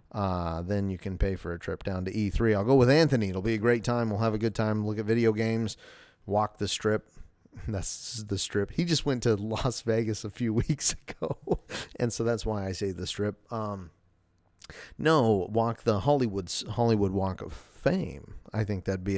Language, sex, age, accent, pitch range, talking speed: English, male, 30-49, American, 100-120 Hz, 205 wpm